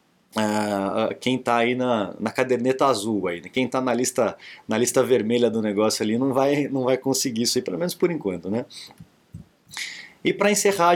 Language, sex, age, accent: Portuguese, male, 20-39, Brazilian